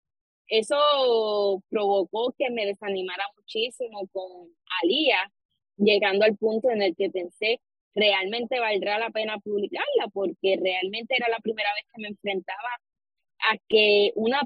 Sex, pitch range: female, 200-255 Hz